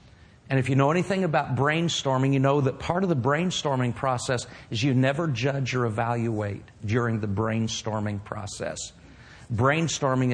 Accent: American